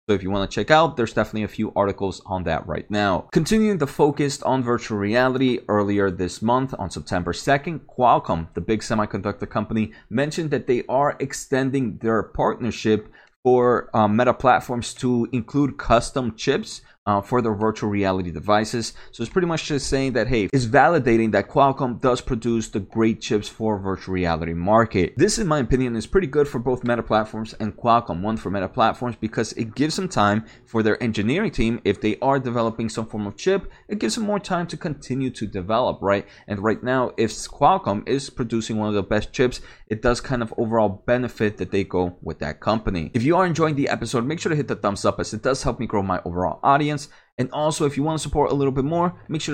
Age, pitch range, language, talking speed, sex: 30-49, 105-130 Hz, English, 215 wpm, male